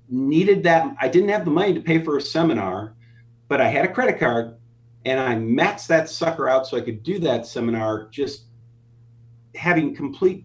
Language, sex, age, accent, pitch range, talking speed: English, male, 40-59, American, 115-145 Hz, 190 wpm